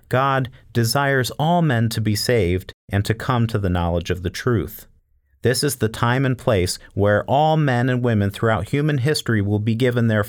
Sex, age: male, 40-59